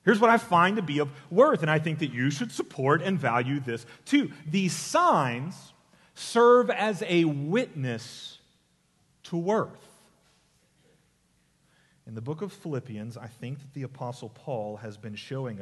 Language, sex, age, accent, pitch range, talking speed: English, male, 40-59, American, 120-150 Hz, 160 wpm